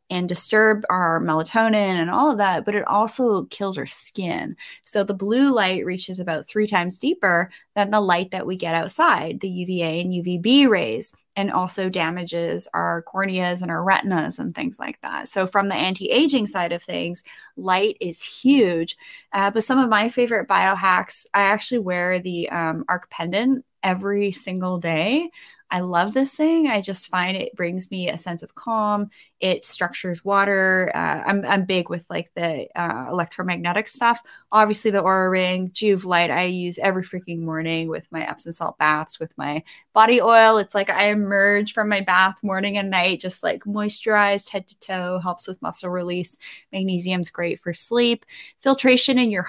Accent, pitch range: American, 175-210 Hz